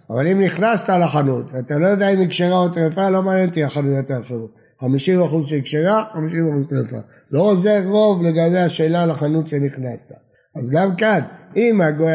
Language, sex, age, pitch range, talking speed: Hebrew, male, 60-79, 145-180 Hz, 175 wpm